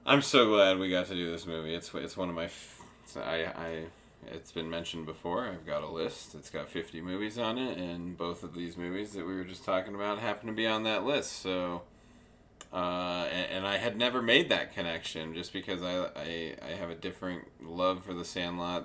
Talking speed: 225 wpm